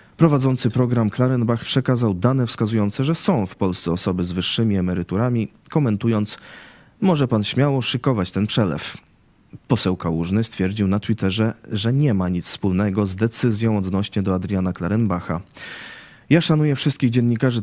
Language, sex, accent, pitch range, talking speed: Polish, male, native, 95-125 Hz, 140 wpm